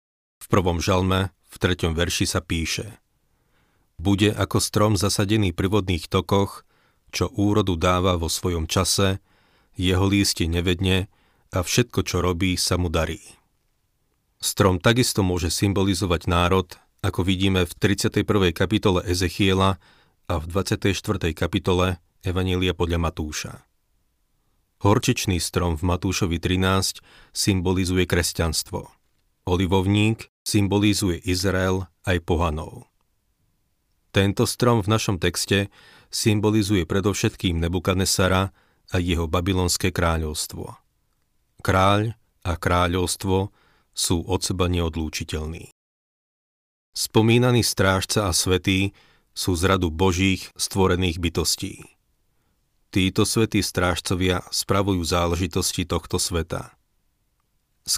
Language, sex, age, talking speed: Slovak, male, 40-59, 100 wpm